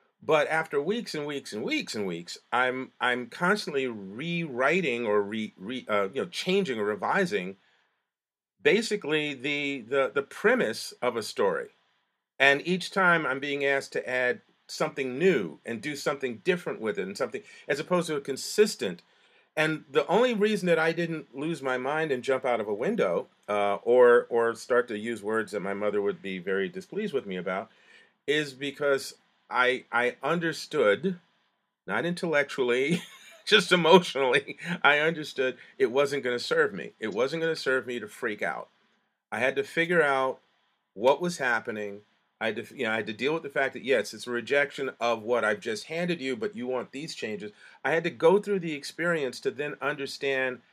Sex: male